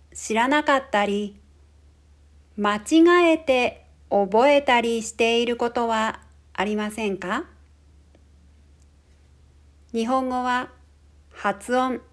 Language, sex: Japanese, female